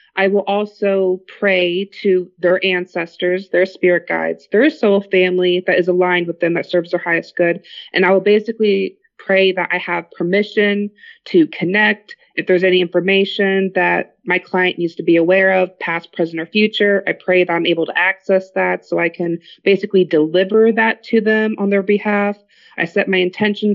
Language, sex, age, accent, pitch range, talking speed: English, female, 20-39, American, 175-200 Hz, 185 wpm